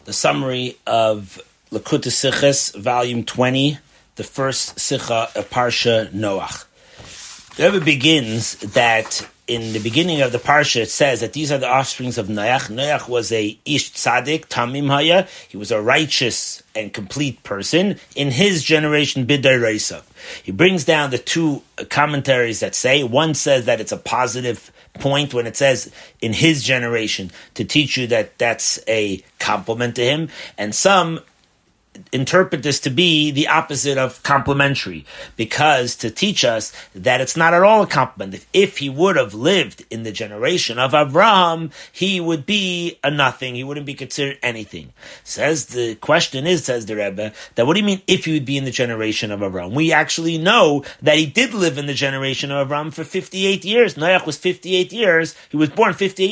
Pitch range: 120-165 Hz